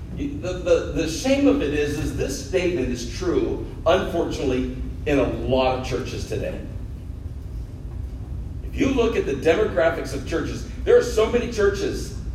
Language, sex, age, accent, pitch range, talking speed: English, male, 50-69, American, 125-170 Hz, 150 wpm